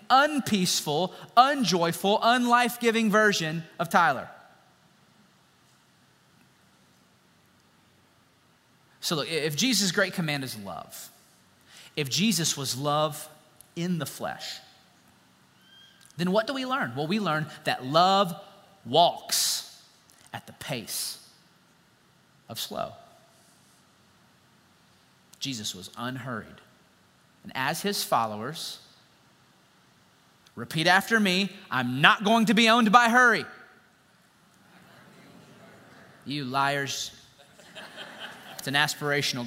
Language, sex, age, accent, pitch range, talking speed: English, male, 30-49, American, 140-195 Hz, 90 wpm